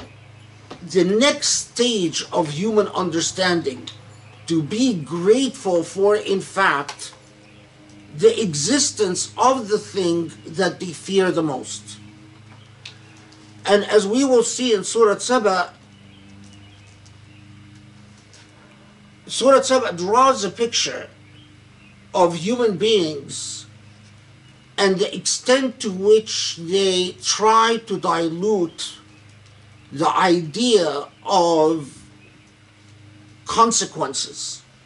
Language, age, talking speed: English, 50-69, 90 wpm